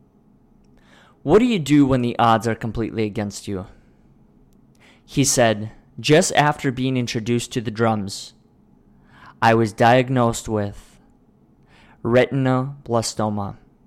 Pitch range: 105-130 Hz